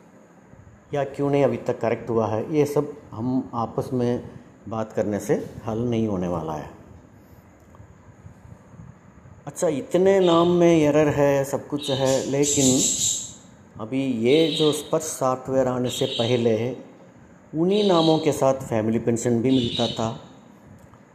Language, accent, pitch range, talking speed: Tamil, native, 110-140 Hz, 140 wpm